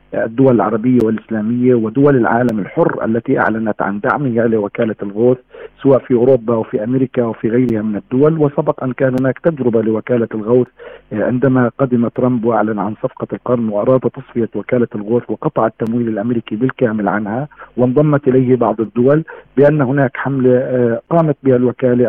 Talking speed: 145 wpm